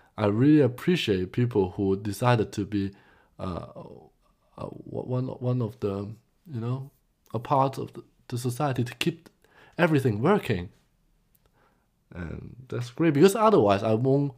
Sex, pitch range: male, 105-140 Hz